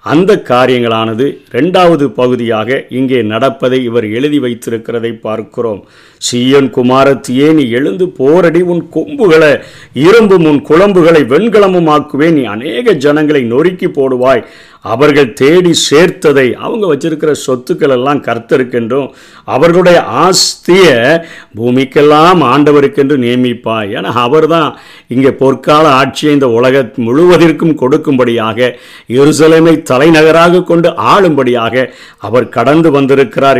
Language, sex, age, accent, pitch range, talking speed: Tamil, male, 50-69, native, 125-160 Hz, 95 wpm